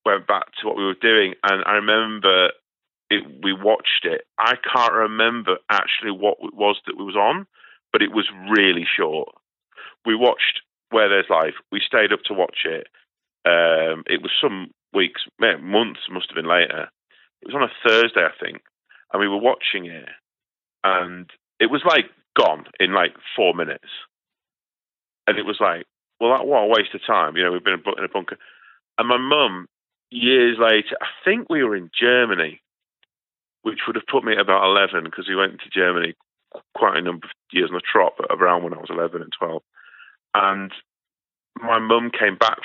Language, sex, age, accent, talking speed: English, male, 40-59, British, 190 wpm